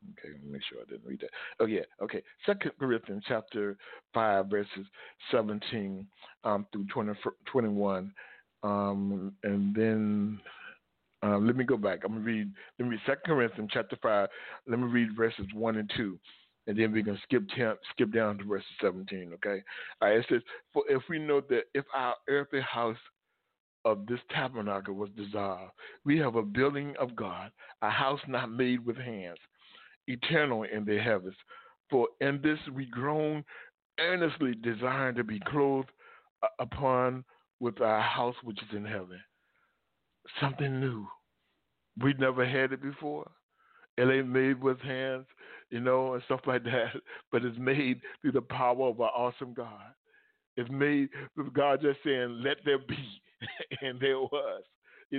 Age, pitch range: 60-79, 105-135 Hz